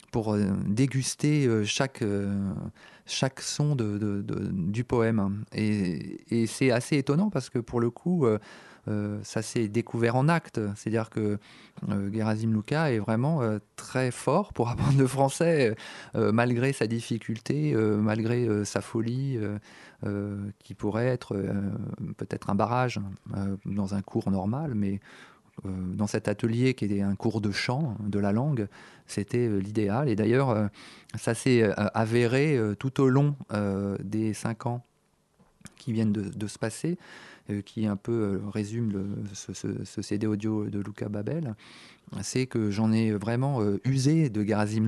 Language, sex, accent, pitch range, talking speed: French, male, French, 100-125 Hz, 165 wpm